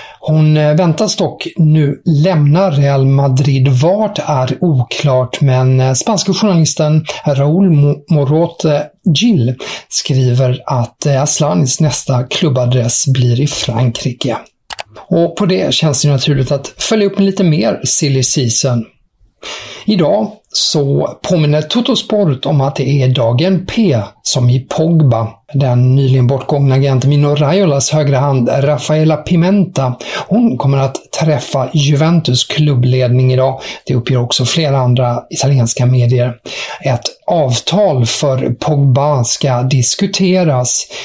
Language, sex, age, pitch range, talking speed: English, male, 50-69, 130-155 Hz, 115 wpm